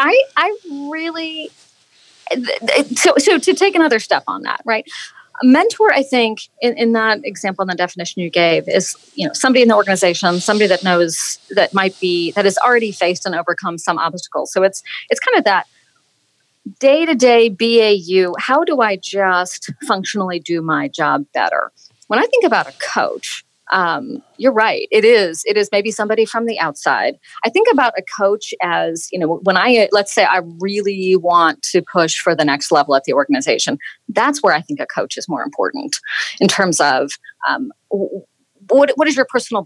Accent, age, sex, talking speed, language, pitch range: American, 40-59, female, 190 wpm, English, 180-280 Hz